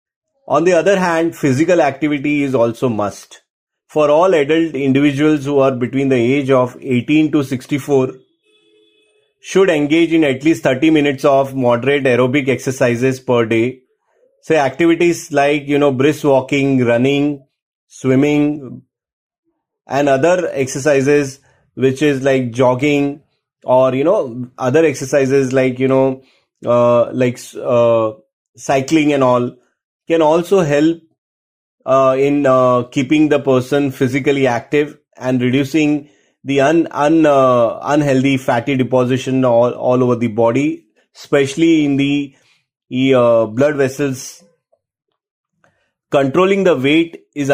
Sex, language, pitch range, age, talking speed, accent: male, English, 130-150 Hz, 30-49, 125 wpm, Indian